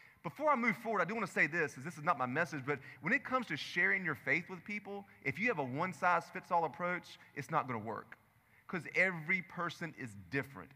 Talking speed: 235 wpm